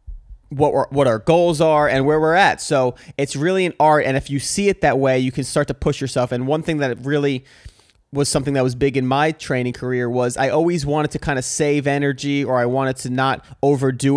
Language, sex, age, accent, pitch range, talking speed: English, male, 30-49, American, 125-150 Hz, 240 wpm